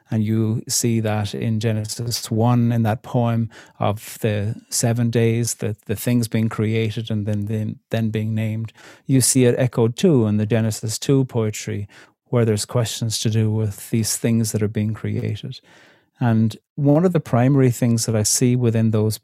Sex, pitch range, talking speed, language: male, 110-125 Hz, 180 wpm, English